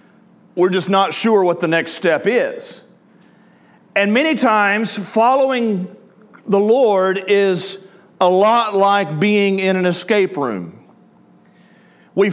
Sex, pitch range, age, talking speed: male, 195-245 Hz, 40-59, 120 wpm